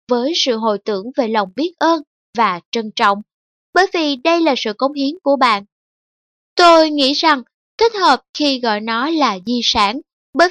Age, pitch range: 10-29, 230-310 Hz